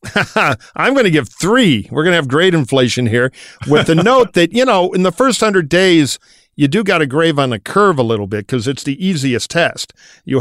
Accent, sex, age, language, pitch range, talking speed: American, male, 50-69, English, 120-165 Hz, 230 wpm